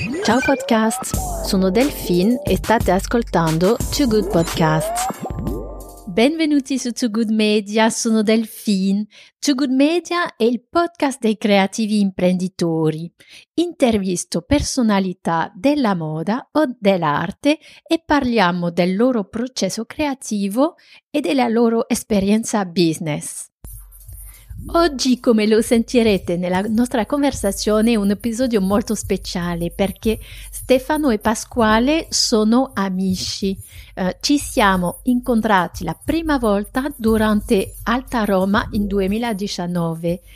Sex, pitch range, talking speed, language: female, 190-255 Hz, 110 wpm, French